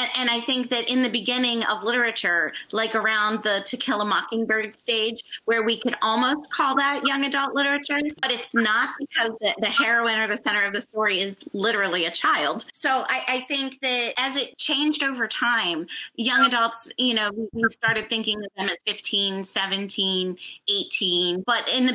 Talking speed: 190 wpm